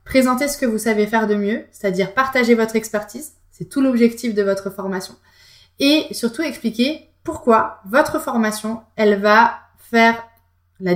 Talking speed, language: 155 wpm, French